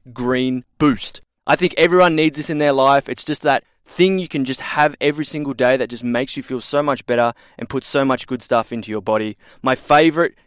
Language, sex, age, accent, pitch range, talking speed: English, male, 20-39, Australian, 120-145 Hz, 230 wpm